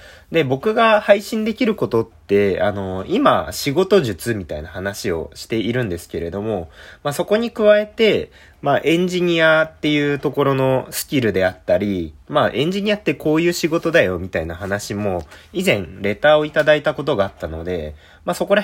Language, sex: Japanese, male